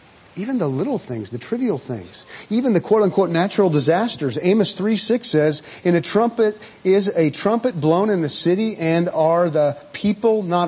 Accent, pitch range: American, 155-205 Hz